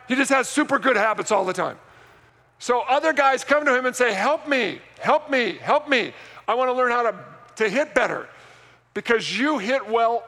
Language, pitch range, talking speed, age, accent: English, 240-280 Hz, 210 wpm, 50-69, American